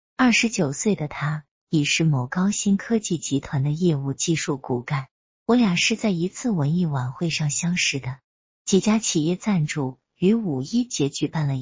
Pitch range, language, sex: 140-180 Hz, Chinese, female